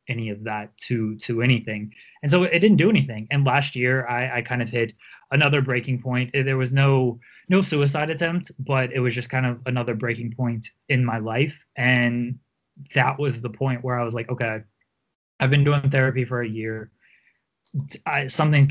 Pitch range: 115-135 Hz